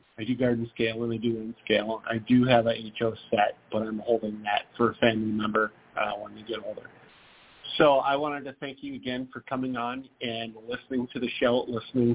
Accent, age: American, 40-59